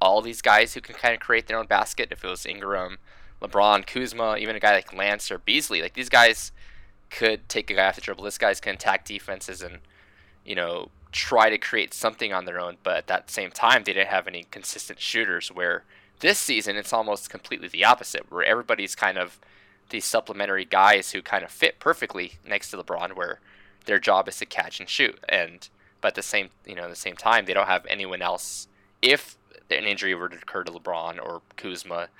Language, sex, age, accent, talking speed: English, male, 10-29, American, 220 wpm